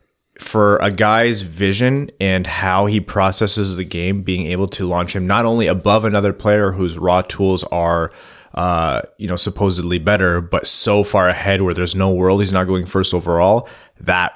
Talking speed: 180 wpm